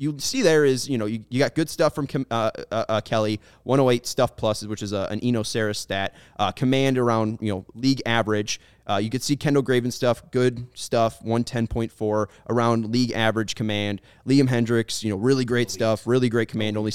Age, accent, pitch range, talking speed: 20-39, American, 110-140 Hz, 210 wpm